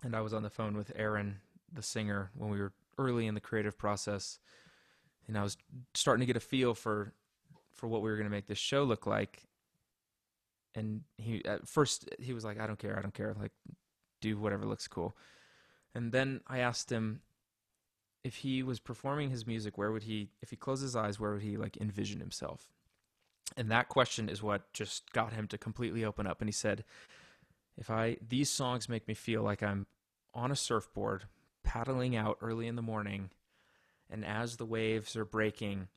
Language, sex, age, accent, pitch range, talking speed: English, male, 20-39, American, 105-115 Hz, 200 wpm